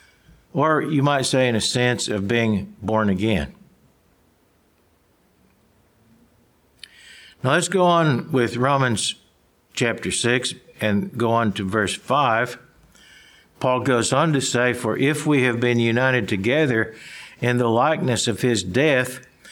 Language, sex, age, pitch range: English, male, 60-79, 120-145 Hz